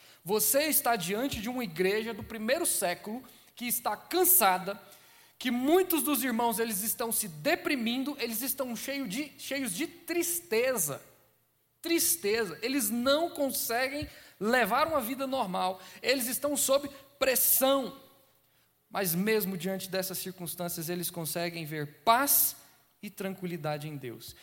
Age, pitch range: 20-39, 180-260 Hz